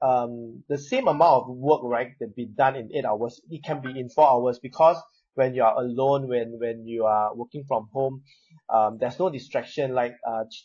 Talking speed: 215 wpm